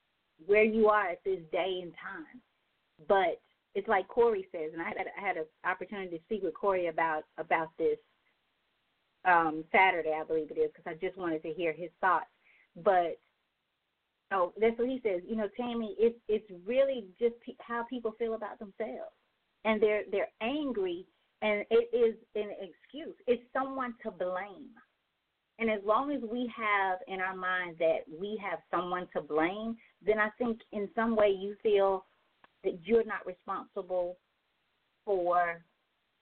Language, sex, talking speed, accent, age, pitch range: English, female, 165 wpm, American, 30-49, 170-235 Hz